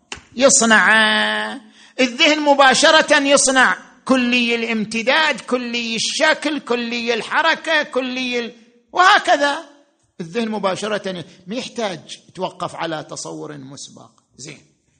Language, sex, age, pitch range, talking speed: Arabic, male, 50-69, 185-270 Hz, 85 wpm